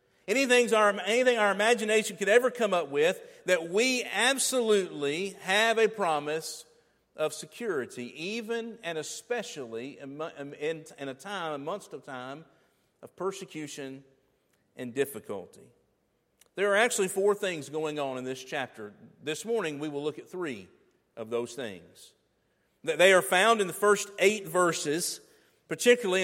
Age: 50-69